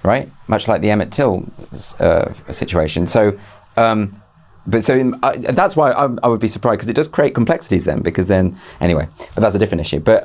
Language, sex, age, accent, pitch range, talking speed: English, male, 40-59, British, 85-115 Hz, 210 wpm